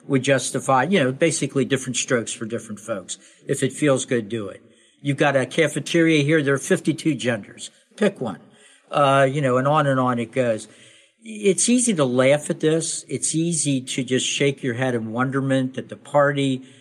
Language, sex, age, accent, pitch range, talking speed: English, male, 60-79, American, 130-180 Hz, 195 wpm